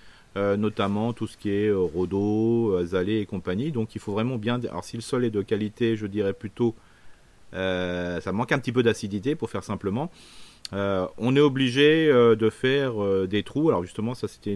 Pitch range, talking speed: 100-120 Hz, 205 wpm